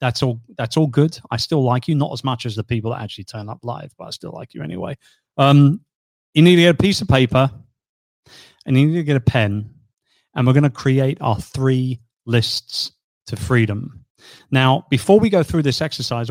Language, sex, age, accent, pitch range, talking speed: English, male, 30-49, British, 120-145 Hz, 215 wpm